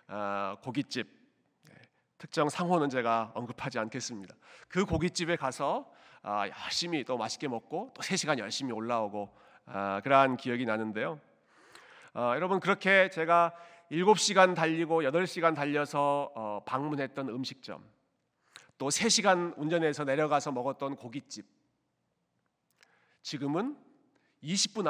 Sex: male